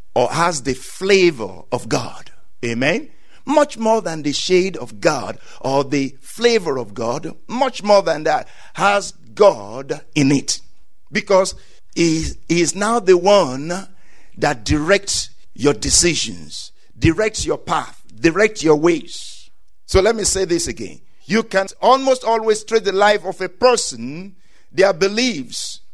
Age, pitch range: 60-79, 165-220 Hz